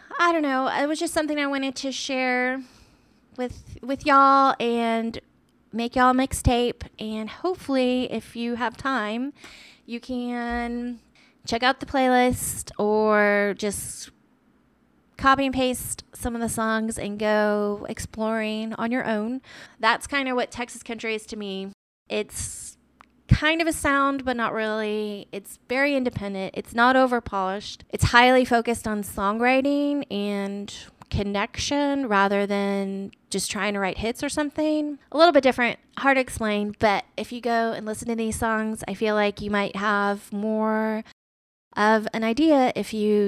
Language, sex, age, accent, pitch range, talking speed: English, female, 20-39, American, 205-260 Hz, 155 wpm